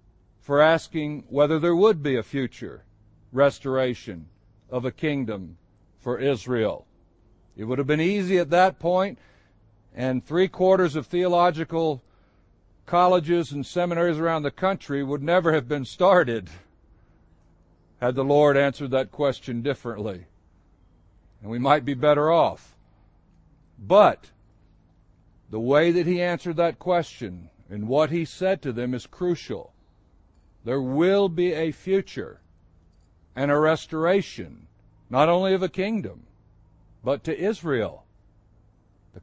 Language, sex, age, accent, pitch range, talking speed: English, male, 60-79, American, 105-160 Hz, 125 wpm